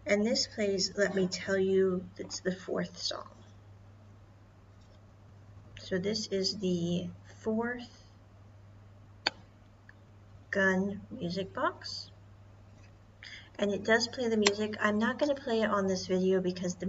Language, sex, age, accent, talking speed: English, female, 40-59, American, 130 wpm